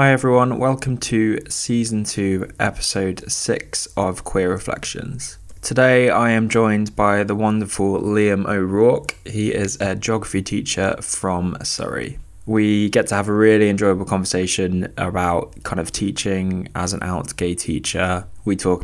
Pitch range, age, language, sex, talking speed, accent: 90-105 Hz, 20-39, English, male, 145 wpm, British